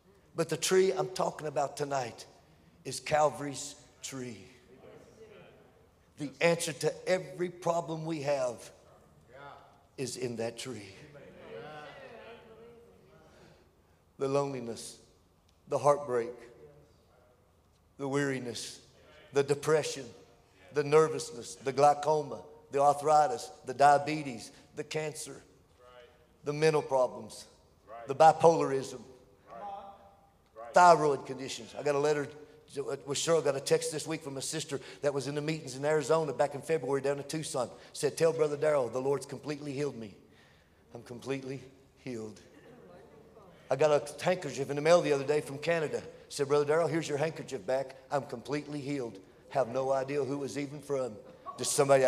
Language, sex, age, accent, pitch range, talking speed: English, male, 50-69, American, 125-155 Hz, 135 wpm